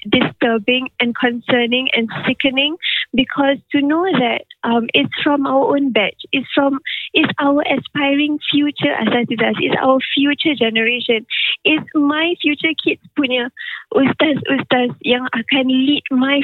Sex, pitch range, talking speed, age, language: female, 250-285 Hz, 135 wpm, 20-39, Malay